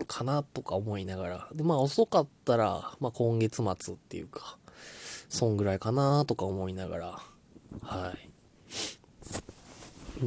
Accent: native